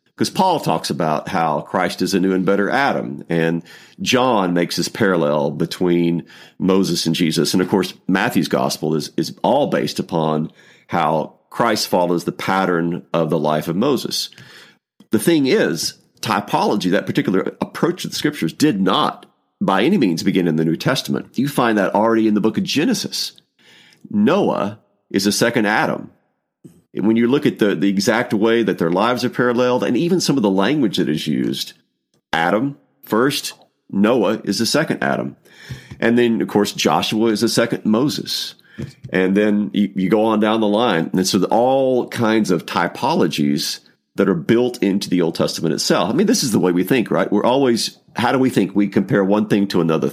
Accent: American